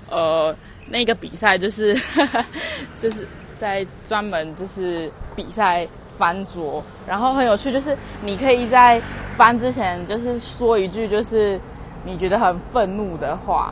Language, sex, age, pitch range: Chinese, female, 20-39, 185-245 Hz